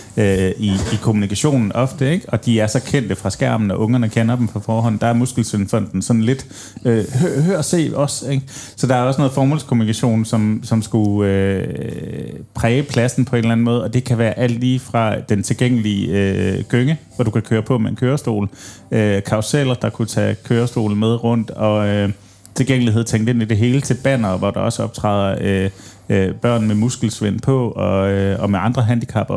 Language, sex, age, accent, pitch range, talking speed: Danish, male, 30-49, native, 105-125 Hz, 200 wpm